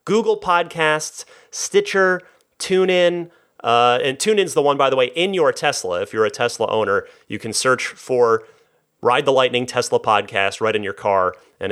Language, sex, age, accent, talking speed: English, male, 30-49, American, 175 wpm